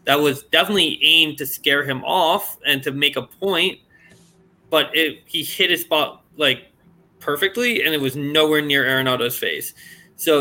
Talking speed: 165 wpm